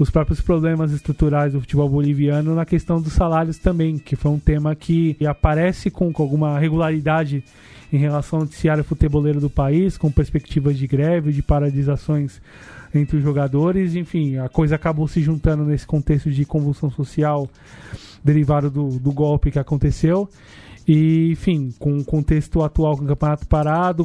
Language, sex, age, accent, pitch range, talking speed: Portuguese, male, 20-39, Brazilian, 145-160 Hz, 160 wpm